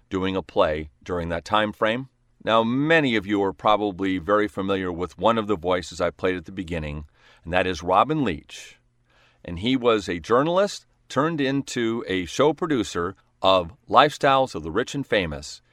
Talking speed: 180 wpm